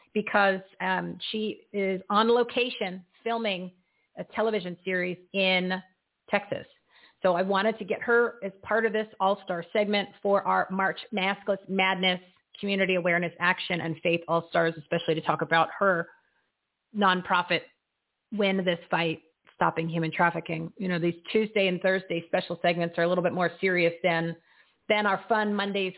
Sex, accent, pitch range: female, American, 180-220 Hz